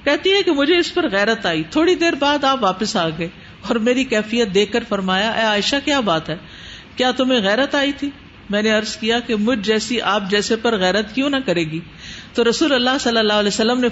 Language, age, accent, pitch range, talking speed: English, 50-69, Indian, 210-280 Hz, 230 wpm